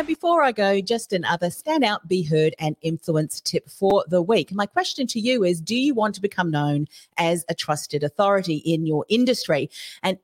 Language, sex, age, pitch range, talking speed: English, female, 40-59, 160-210 Hz, 200 wpm